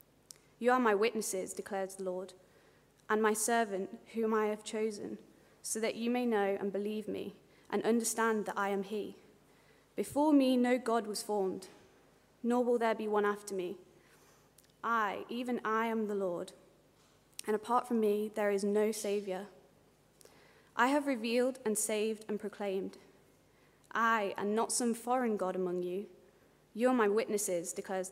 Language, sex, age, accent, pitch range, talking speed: English, female, 20-39, British, 195-225 Hz, 160 wpm